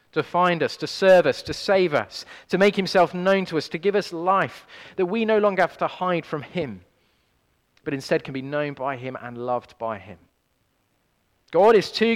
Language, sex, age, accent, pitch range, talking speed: English, male, 30-49, British, 130-190 Hz, 205 wpm